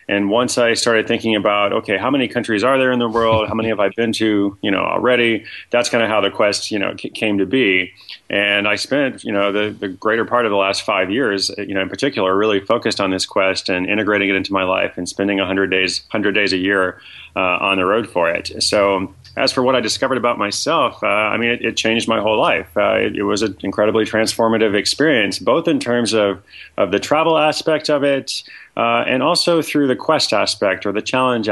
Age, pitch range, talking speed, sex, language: 30-49, 95-115 Hz, 235 wpm, male, English